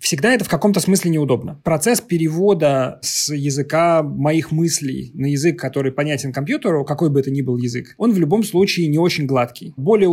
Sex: male